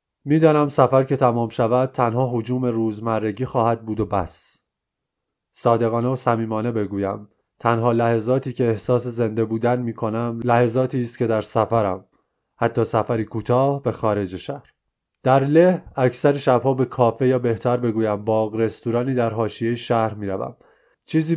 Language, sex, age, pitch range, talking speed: Persian, male, 30-49, 115-135 Hz, 150 wpm